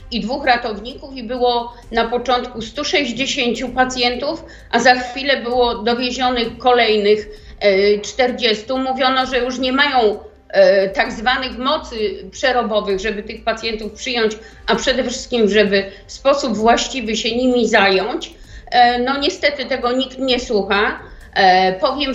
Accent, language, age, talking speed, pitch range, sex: native, Polish, 50-69, 125 wpm, 225-260 Hz, female